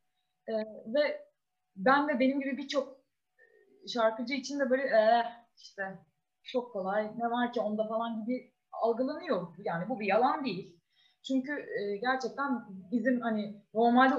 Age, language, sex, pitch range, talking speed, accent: 30-49, Turkish, female, 200-265 Hz, 130 wpm, native